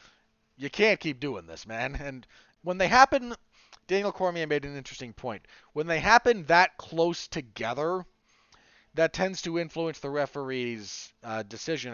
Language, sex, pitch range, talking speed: English, male, 120-165 Hz, 150 wpm